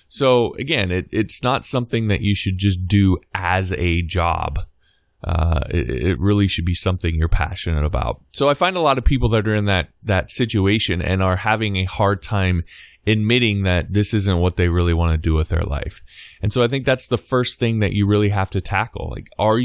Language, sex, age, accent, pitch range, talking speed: English, male, 20-39, American, 90-115 Hz, 220 wpm